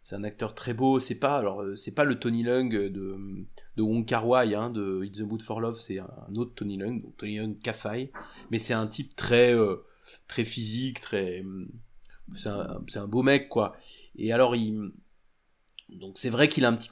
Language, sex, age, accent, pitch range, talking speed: French, male, 20-39, French, 110-130 Hz, 210 wpm